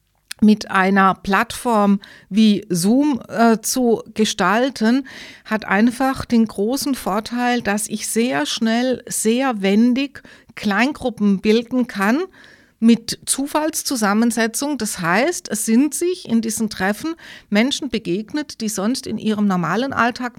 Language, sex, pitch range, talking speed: German, female, 215-255 Hz, 120 wpm